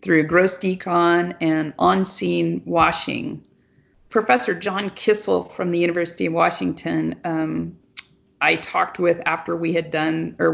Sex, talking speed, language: female, 130 wpm, English